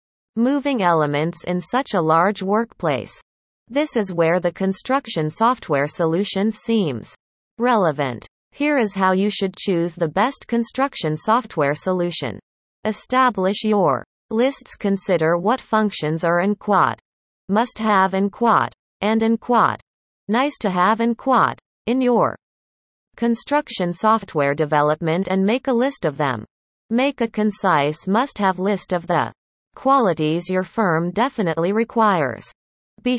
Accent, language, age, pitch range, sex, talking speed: American, English, 30-49, 170-230 Hz, female, 130 wpm